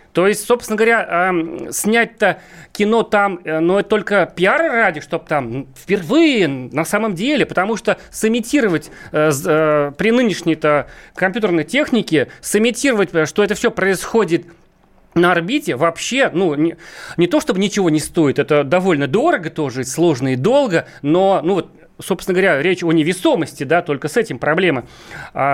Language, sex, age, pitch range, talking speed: Russian, male, 40-59, 155-205 Hz, 155 wpm